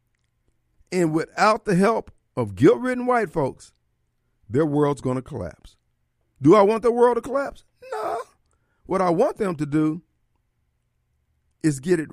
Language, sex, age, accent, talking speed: English, male, 50-69, American, 150 wpm